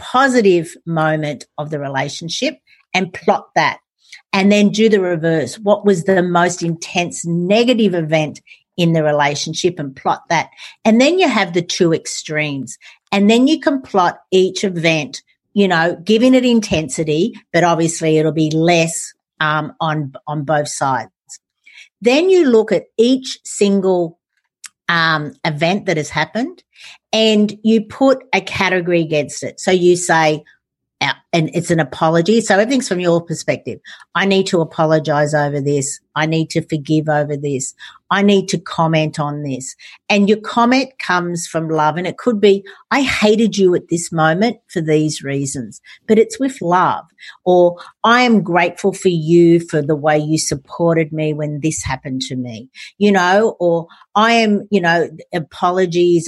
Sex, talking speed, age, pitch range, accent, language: female, 160 wpm, 50-69, 155-205 Hz, Australian, English